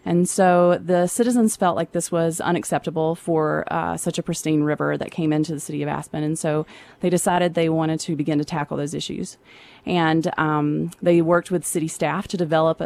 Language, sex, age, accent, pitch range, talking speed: English, female, 30-49, American, 155-180 Hz, 200 wpm